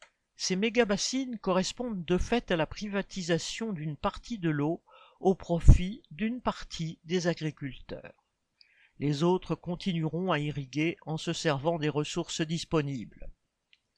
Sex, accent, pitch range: male, French, 155-205 Hz